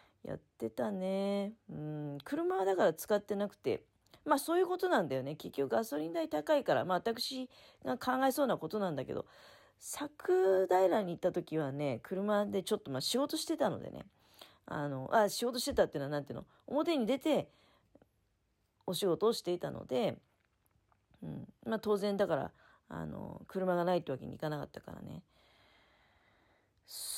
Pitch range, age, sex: 160-255 Hz, 40-59, female